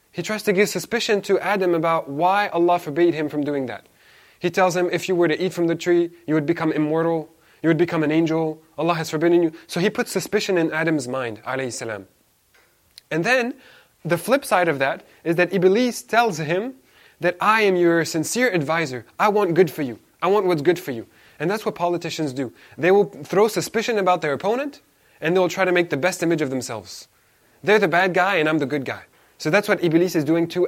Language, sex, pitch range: English, male, 150-190 Hz